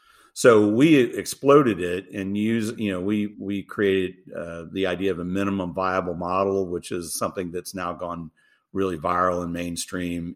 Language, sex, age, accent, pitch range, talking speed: English, male, 50-69, American, 95-110 Hz, 170 wpm